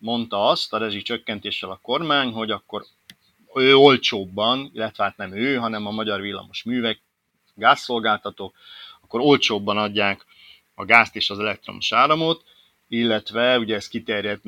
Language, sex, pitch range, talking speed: Hungarian, male, 105-130 Hz, 130 wpm